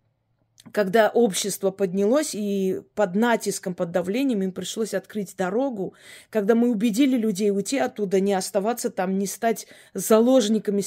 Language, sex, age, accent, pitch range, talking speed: Russian, female, 20-39, native, 190-235 Hz, 135 wpm